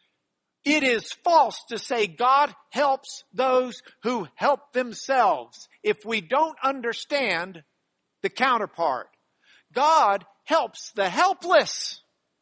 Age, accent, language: 50-69, American, English